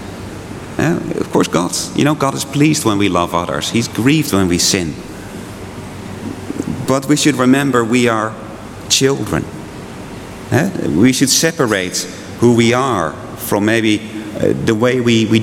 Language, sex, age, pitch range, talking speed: English, male, 40-59, 100-125 Hz, 150 wpm